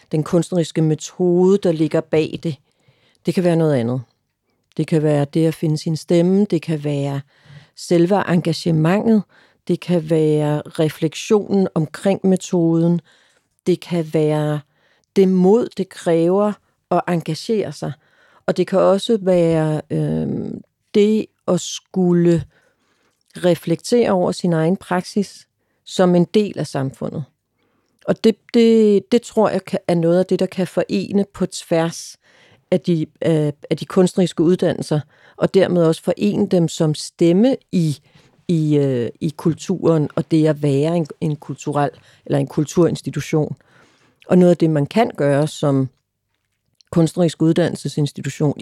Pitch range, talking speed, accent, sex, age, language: 150-185 Hz, 135 wpm, native, female, 40-59, Danish